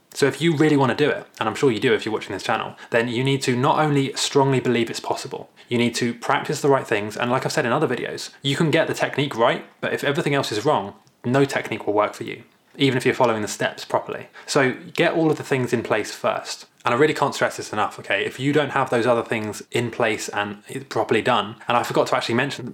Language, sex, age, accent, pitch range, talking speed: English, male, 20-39, British, 120-140 Hz, 265 wpm